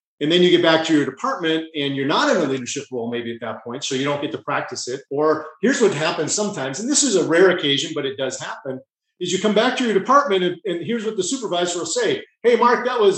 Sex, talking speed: male, 275 wpm